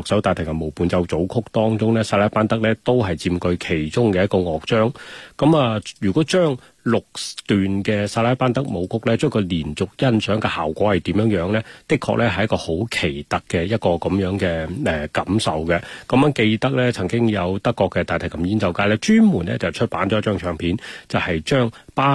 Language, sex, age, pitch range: Chinese, male, 30-49, 85-110 Hz